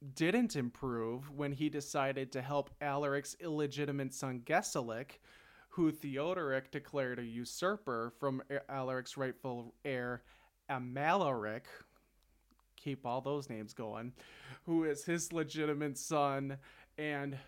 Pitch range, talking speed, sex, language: 120-150 Hz, 110 wpm, male, English